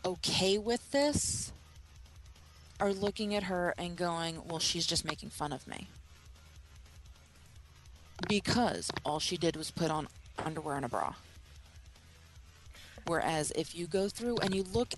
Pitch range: 150-205 Hz